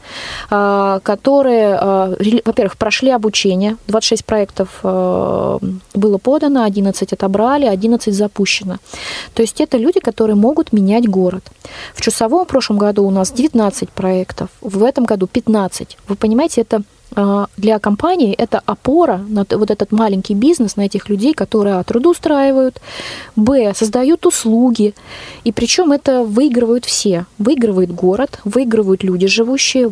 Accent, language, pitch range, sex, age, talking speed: native, Russian, 195-235 Hz, female, 20-39, 130 wpm